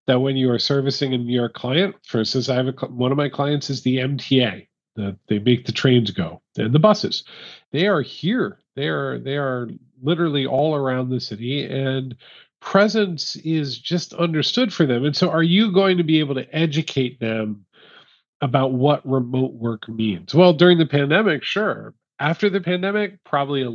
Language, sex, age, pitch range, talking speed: English, male, 40-59, 125-165 Hz, 190 wpm